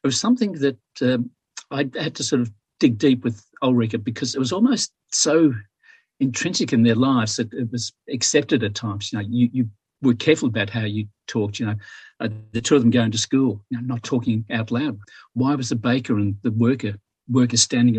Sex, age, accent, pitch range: male, 50-69, Australian, 110-125 Hz